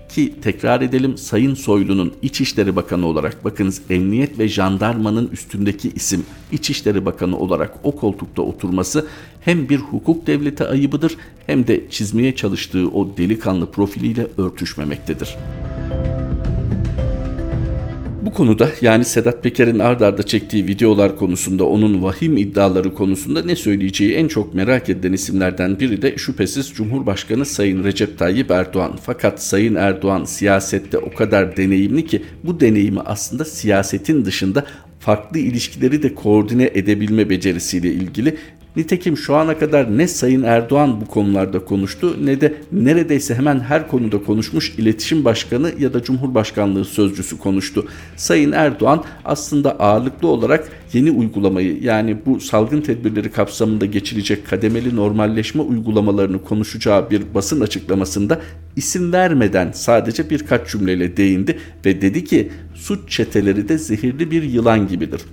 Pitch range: 95-130 Hz